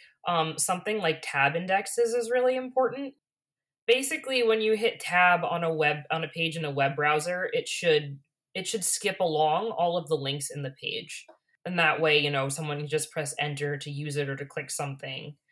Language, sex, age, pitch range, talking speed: English, female, 20-39, 145-170 Hz, 205 wpm